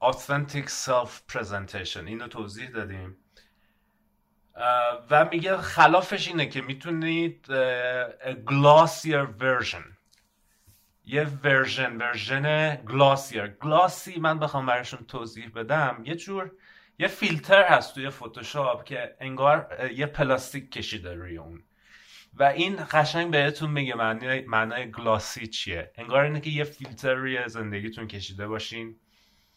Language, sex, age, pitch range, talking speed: English, male, 30-49, 115-155 Hz, 115 wpm